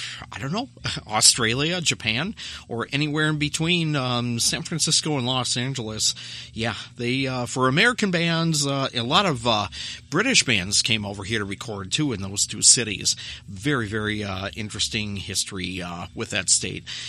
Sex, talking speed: male, 165 wpm